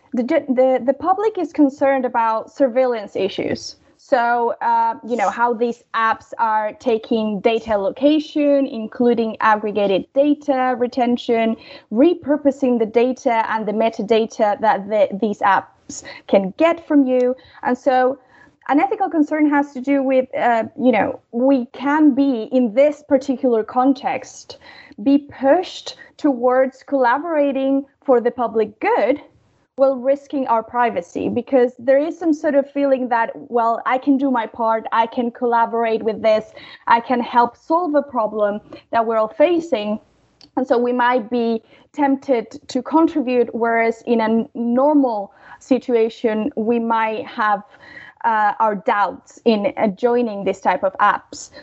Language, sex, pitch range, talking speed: English, female, 230-280 Hz, 140 wpm